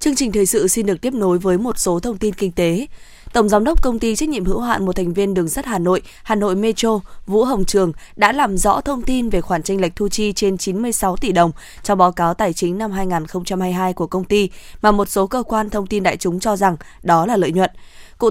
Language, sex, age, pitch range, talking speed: Vietnamese, female, 20-39, 185-225 Hz, 255 wpm